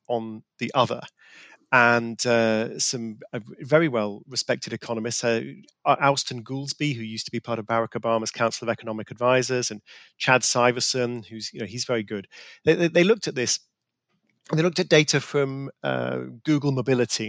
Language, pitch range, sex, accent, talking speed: English, 120-155 Hz, male, British, 165 wpm